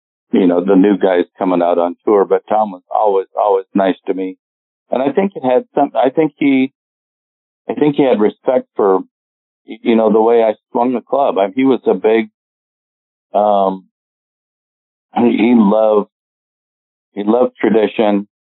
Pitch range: 90-115 Hz